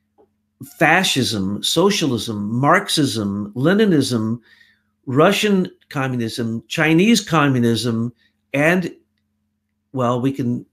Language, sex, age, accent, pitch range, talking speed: English, male, 50-69, American, 110-160 Hz, 65 wpm